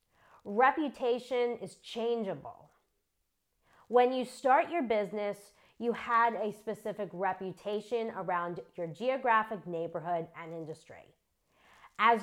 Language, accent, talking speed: English, American, 100 wpm